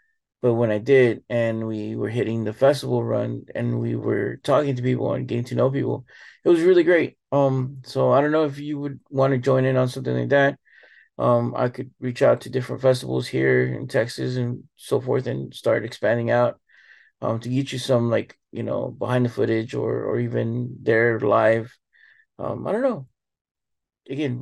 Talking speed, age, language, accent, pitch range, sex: 200 wpm, 30-49, English, American, 115-130 Hz, male